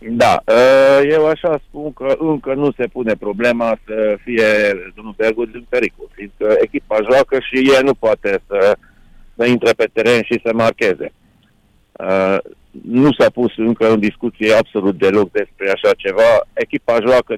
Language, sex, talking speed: Romanian, male, 150 wpm